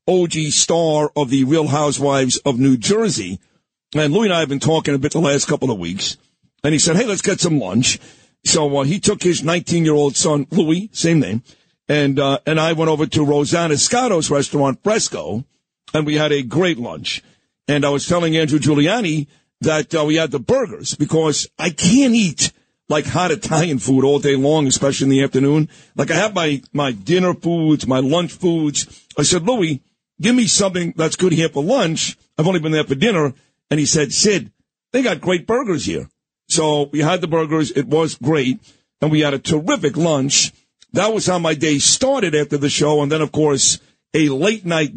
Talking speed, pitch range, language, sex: 200 wpm, 145-170 Hz, English, male